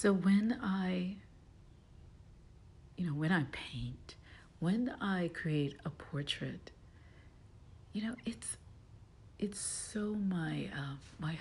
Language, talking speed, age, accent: English, 110 wpm, 60-79, American